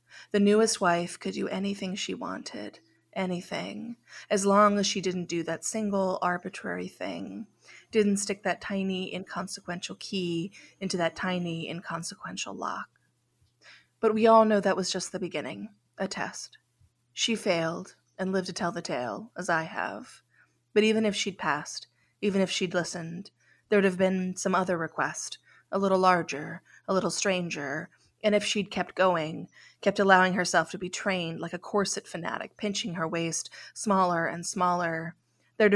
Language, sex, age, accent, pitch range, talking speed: English, female, 20-39, American, 170-200 Hz, 160 wpm